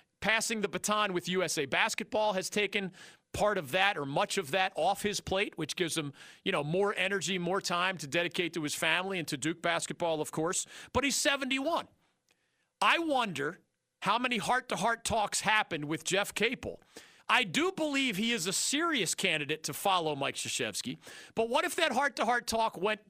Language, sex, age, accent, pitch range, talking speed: English, male, 40-59, American, 170-225 Hz, 180 wpm